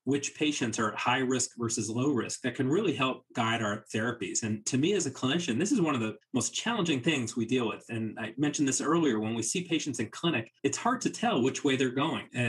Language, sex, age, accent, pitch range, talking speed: English, male, 30-49, American, 110-140 Hz, 255 wpm